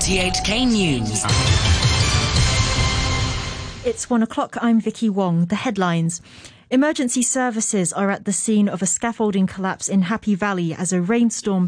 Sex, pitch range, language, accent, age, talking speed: female, 185-225 Hz, English, British, 30-49, 130 wpm